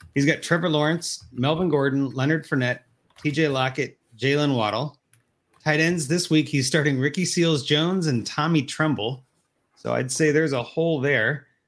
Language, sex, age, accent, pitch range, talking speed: English, male, 30-49, American, 130-155 Hz, 155 wpm